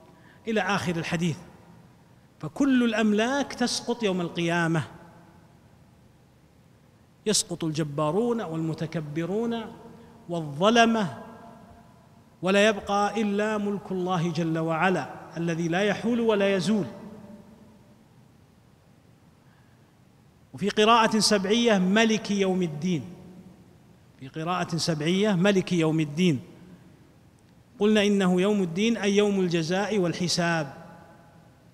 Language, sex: Arabic, male